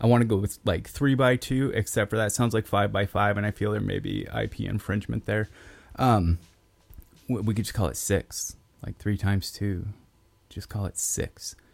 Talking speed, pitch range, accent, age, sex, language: 215 wpm, 95-115 Hz, American, 30-49, male, English